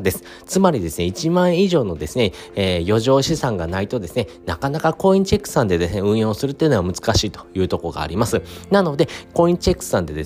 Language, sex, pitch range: Japanese, male, 100-155 Hz